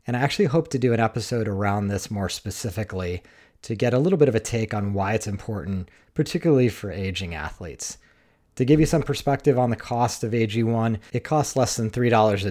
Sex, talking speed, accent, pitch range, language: male, 205 wpm, American, 100-125 Hz, English